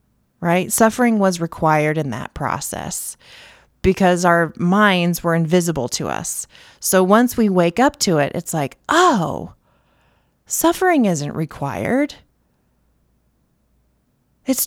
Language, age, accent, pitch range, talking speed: English, 30-49, American, 165-225 Hz, 115 wpm